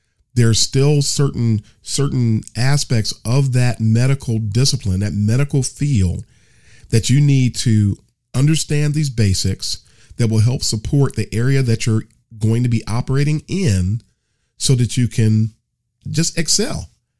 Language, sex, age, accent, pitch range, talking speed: English, male, 40-59, American, 105-135 Hz, 135 wpm